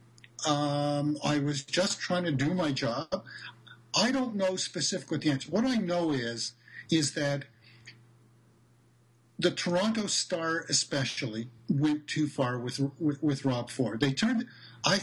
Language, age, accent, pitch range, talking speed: English, 50-69, American, 130-185 Hz, 140 wpm